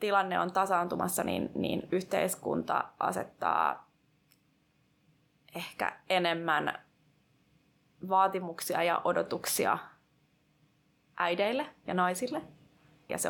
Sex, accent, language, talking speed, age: female, native, Finnish, 75 wpm, 20-39